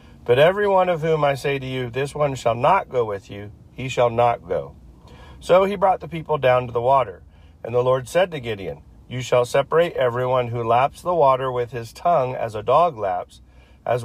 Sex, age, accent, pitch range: male, 40-59, American, 115-150 Hz